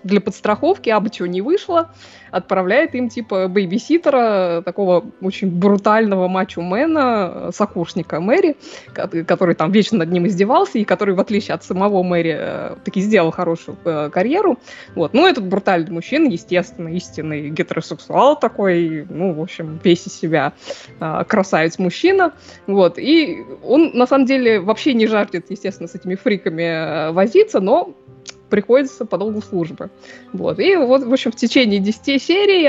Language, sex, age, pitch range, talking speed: Russian, female, 20-39, 180-255 Hz, 145 wpm